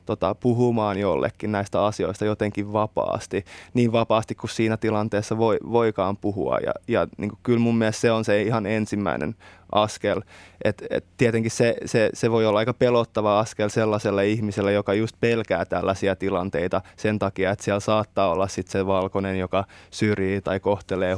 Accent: native